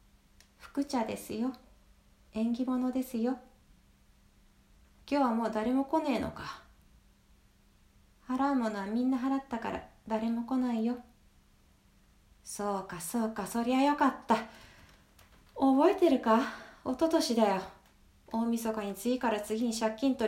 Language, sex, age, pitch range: Japanese, female, 30-49, 220-275 Hz